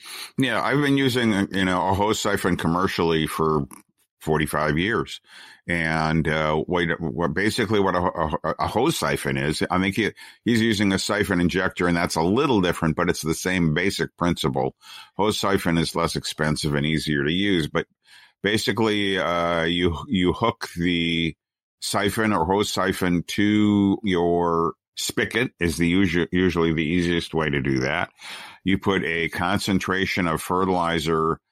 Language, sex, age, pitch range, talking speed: English, male, 50-69, 80-95 Hz, 160 wpm